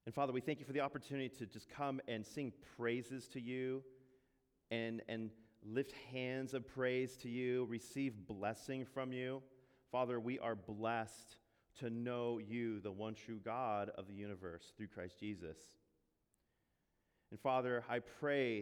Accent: American